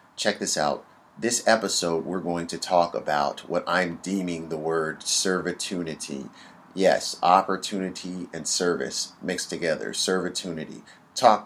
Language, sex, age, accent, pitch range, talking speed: English, male, 30-49, American, 80-90 Hz, 125 wpm